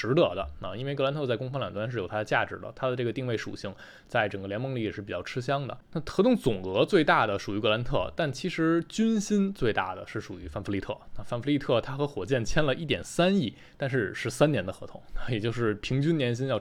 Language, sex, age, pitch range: Chinese, male, 20-39, 105-140 Hz